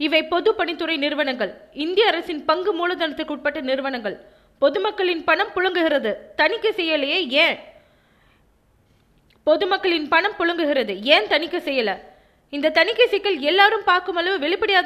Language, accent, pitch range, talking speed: Tamil, native, 280-355 Hz, 110 wpm